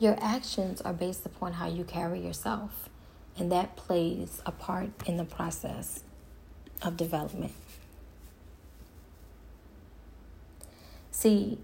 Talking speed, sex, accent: 105 wpm, female, American